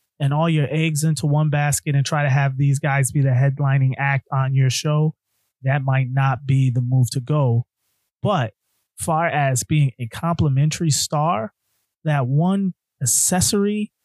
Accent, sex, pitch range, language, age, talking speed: American, male, 130-175 Hz, English, 30-49, 160 wpm